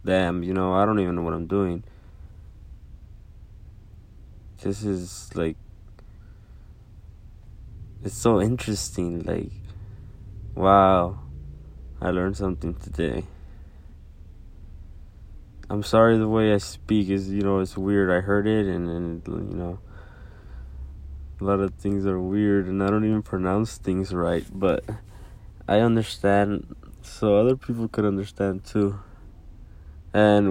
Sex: male